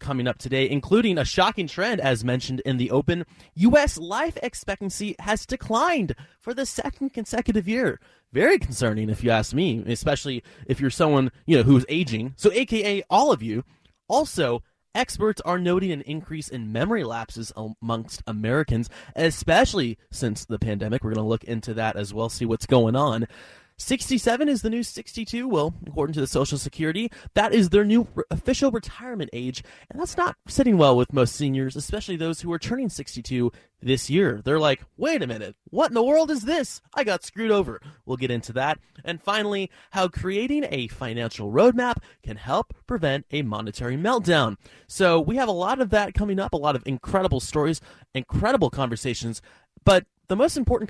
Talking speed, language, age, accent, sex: 180 wpm, English, 20-39, American, male